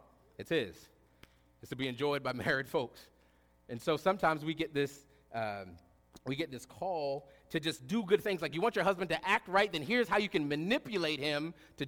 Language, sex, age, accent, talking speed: English, male, 40-59, American, 205 wpm